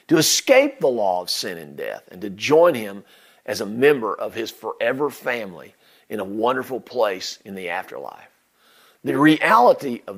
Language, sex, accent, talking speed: English, male, American, 170 wpm